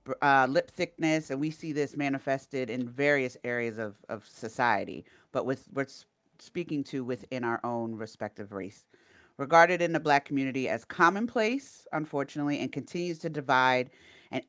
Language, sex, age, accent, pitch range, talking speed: English, female, 40-59, American, 130-170 Hz, 155 wpm